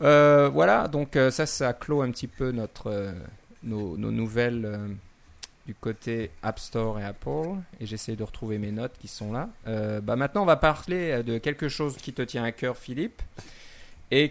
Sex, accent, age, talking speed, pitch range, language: male, French, 30-49, 195 wpm, 105-125 Hz, French